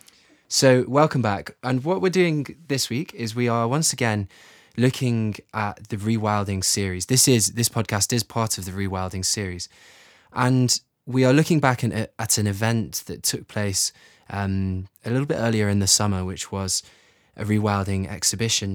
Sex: male